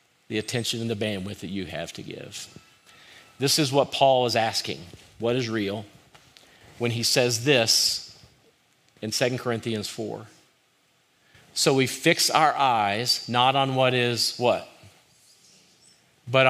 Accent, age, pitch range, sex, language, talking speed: American, 50-69, 120-155 Hz, male, English, 140 wpm